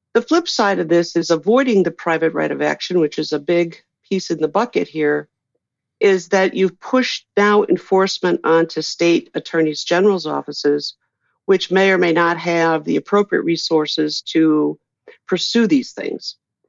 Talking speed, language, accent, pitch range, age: 160 wpm, English, American, 155-195 Hz, 50-69